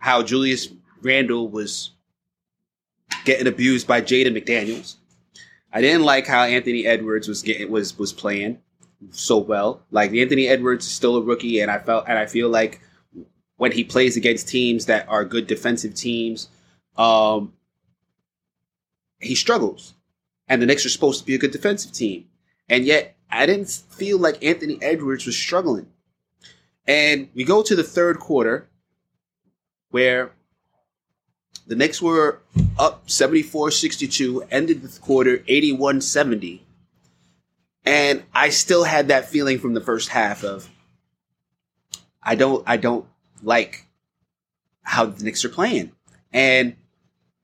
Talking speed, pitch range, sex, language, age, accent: 140 wpm, 100-135 Hz, male, English, 20-39, American